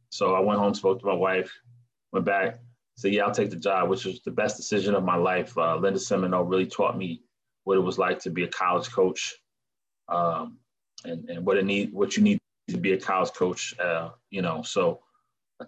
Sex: male